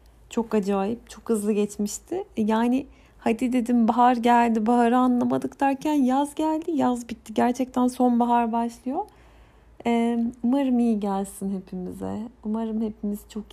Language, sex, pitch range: Turkish, female, 215-295 Hz